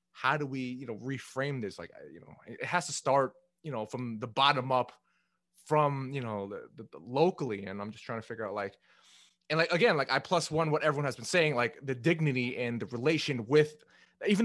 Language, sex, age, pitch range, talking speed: English, male, 20-39, 140-185 Hz, 225 wpm